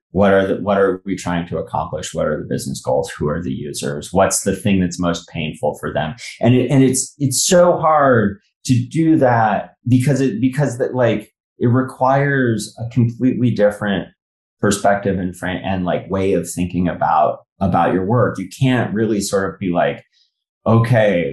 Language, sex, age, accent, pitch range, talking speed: English, male, 30-49, American, 90-120 Hz, 185 wpm